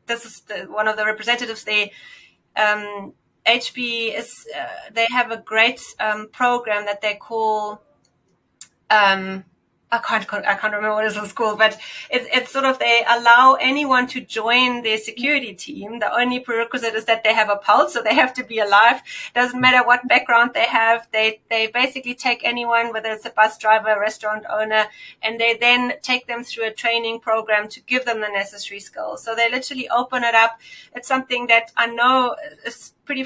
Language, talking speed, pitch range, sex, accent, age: English, 195 wpm, 220-250 Hz, female, German, 30-49